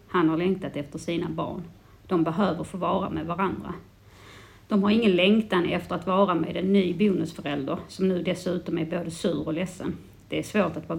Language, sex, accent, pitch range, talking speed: Swedish, female, native, 160-195 Hz, 190 wpm